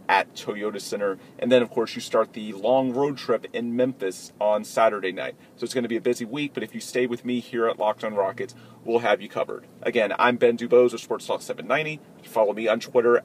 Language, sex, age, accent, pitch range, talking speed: English, male, 30-49, American, 115-140 Hz, 240 wpm